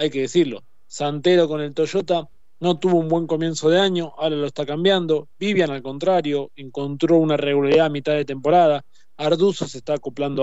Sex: male